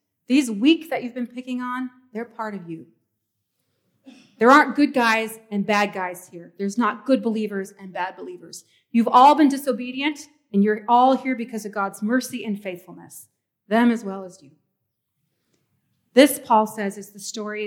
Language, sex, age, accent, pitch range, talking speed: English, female, 30-49, American, 200-255 Hz, 175 wpm